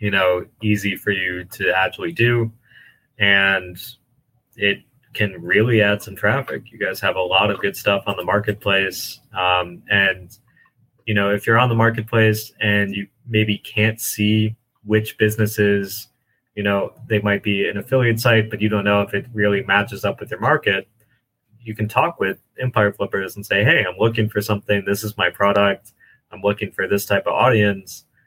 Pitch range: 95-115 Hz